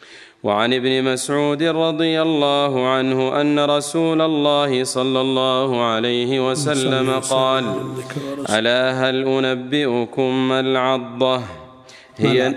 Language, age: Arabic, 40-59